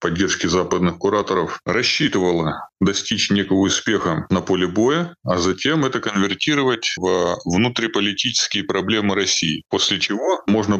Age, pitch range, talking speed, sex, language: 20-39, 90-110 Hz, 115 wpm, female, Russian